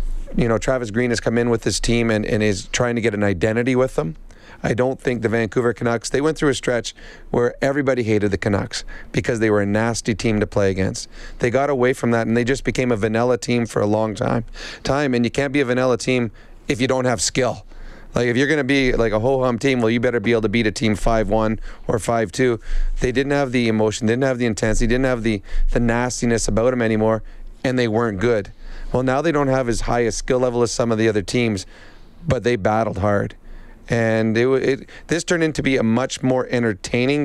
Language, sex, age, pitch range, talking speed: English, male, 30-49, 110-130 Hz, 240 wpm